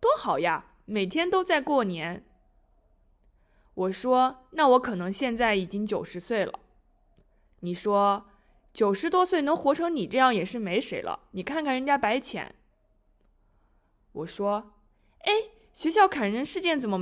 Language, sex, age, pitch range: Chinese, female, 20-39, 195-295 Hz